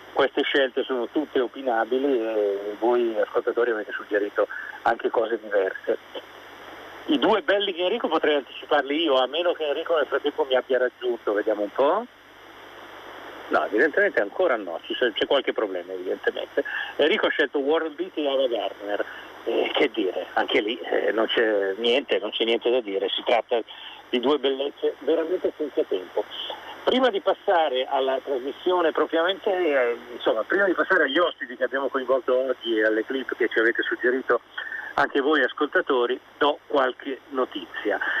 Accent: native